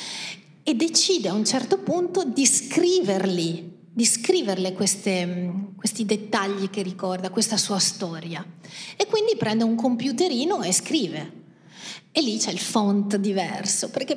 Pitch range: 185-240 Hz